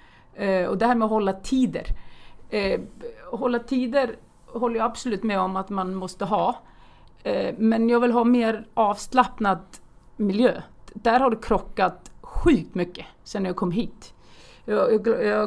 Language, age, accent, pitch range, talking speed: Swedish, 40-59, native, 190-235 Hz, 140 wpm